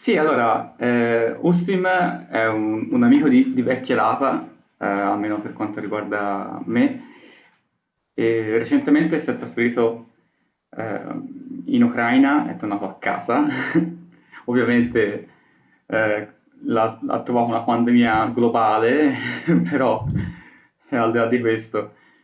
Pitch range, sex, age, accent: 110-150 Hz, male, 20-39, native